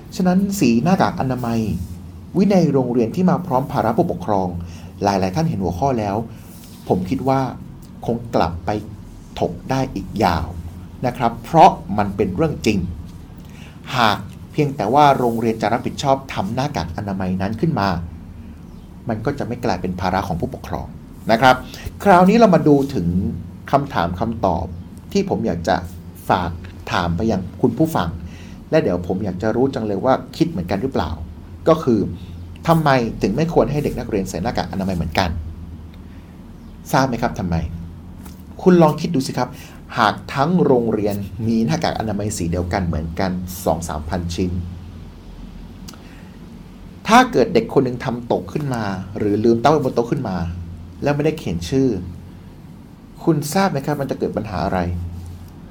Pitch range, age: 90-125 Hz, 60-79